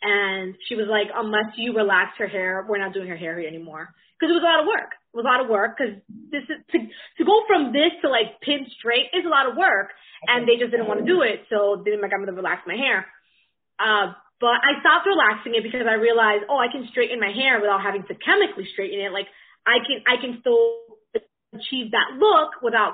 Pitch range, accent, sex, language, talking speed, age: 200-255 Hz, American, female, English, 240 wpm, 20-39